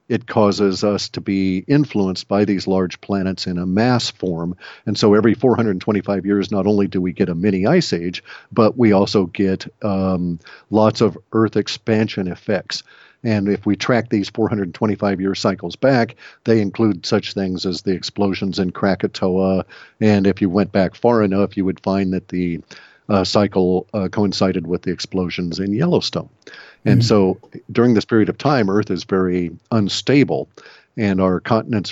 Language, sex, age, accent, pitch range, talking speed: English, male, 50-69, American, 95-110 Hz, 170 wpm